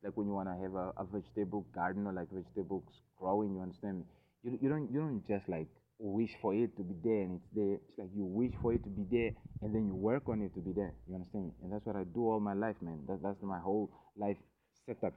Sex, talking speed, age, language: male, 275 wpm, 30-49, English